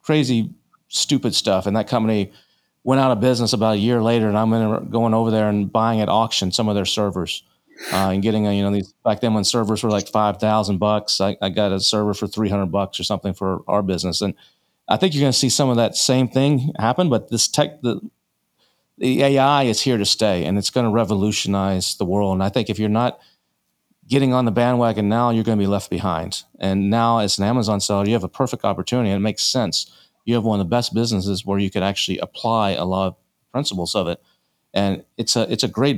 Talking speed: 230 wpm